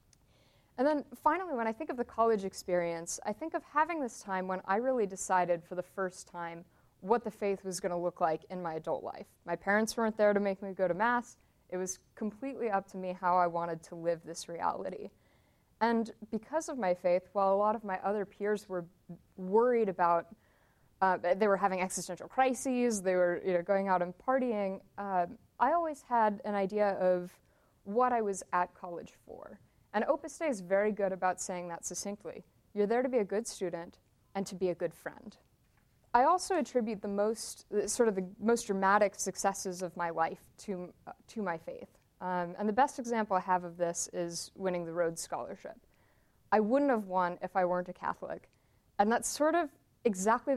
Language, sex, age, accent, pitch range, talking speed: English, female, 20-39, American, 180-225 Hz, 200 wpm